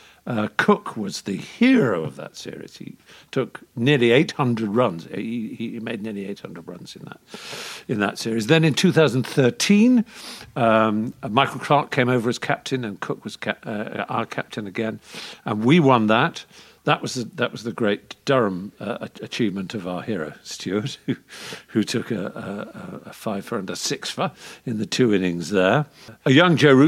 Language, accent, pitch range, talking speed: English, British, 110-150 Hz, 180 wpm